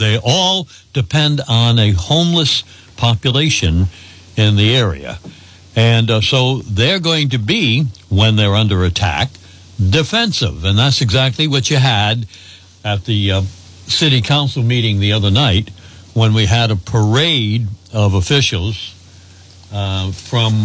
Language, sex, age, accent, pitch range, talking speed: English, male, 60-79, American, 95-125 Hz, 135 wpm